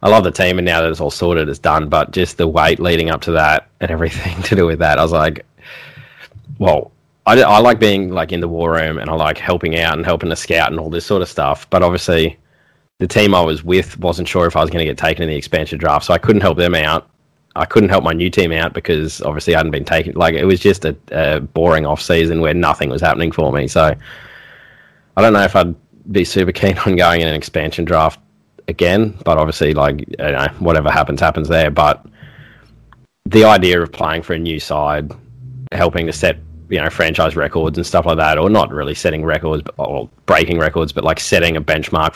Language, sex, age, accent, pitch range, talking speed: English, male, 20-39, Australian, 80-90 Hz, 230 wpm